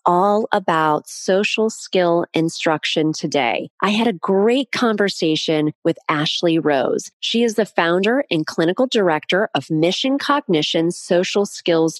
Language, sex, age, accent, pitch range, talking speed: English, female, 30-49, American, 165-215 Hz, 130 wpm